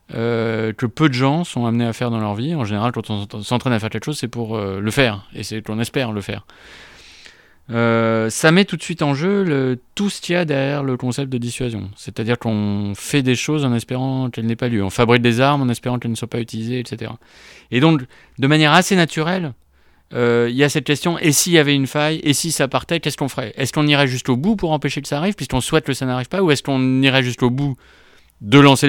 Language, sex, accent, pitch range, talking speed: French, male, French, 115-150 Hz, 260 wpm